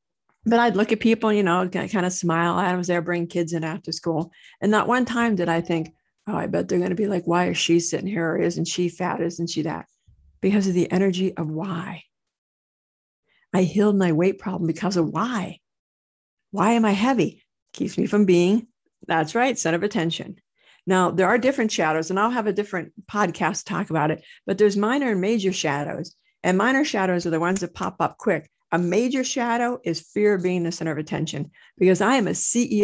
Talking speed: 215 wpm